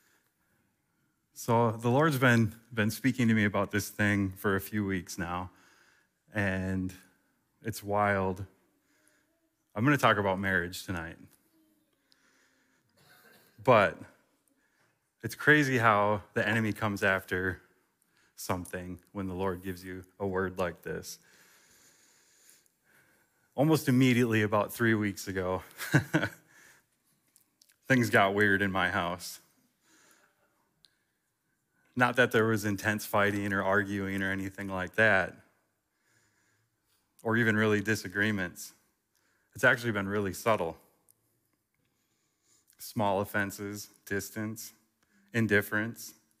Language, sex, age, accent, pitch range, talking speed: English, male, 20-39, American, 95-110 Hz, 105 wpm